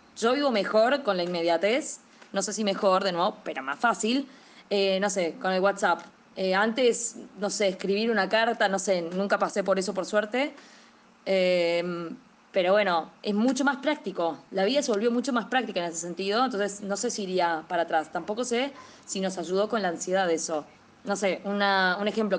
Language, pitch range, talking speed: Spanish, 195-260 Hz, 200 wpm